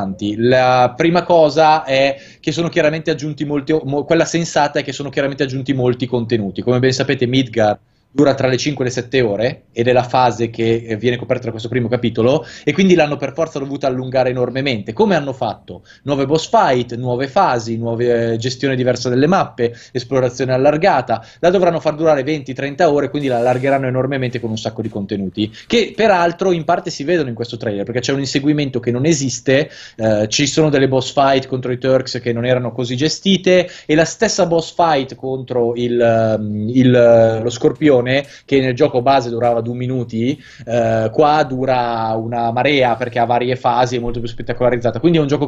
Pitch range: 120-150 Hz